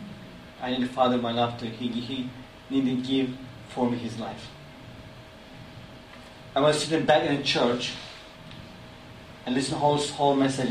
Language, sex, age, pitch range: Korean, male, 40-59, 120-140 Hz